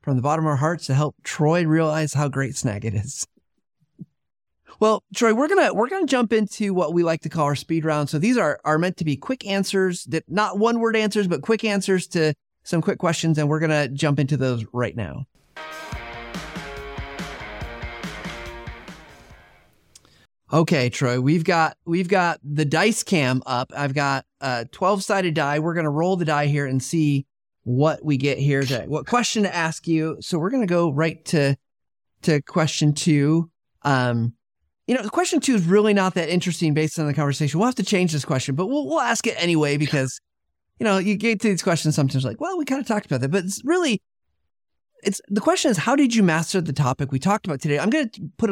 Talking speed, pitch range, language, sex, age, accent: 210 wpm, 145-200 Hz, English, male, 30-49, American